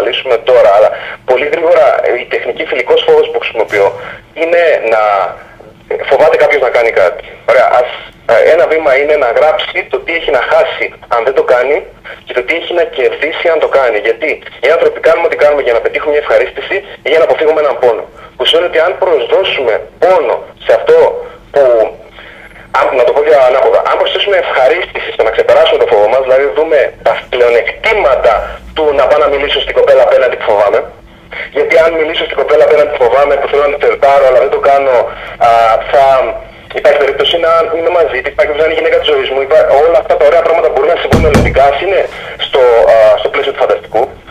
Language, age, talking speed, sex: Greek, 30-49, 200 wpm, male